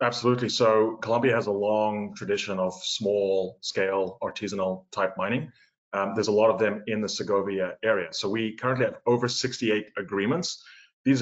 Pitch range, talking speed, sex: 100-120 Hz, 165 wpm, male